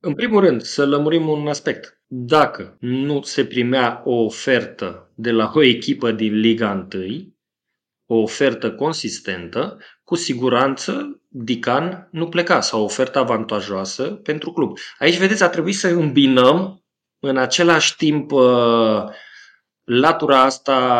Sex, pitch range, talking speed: male, 115-140 Hz, 130 wpm